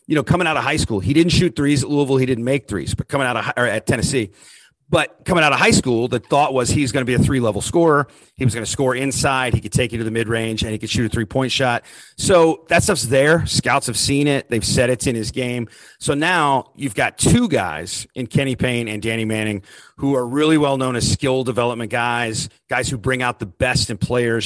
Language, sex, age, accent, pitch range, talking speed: English, male, 40-59, American, 115-140 Hz, 260 wpm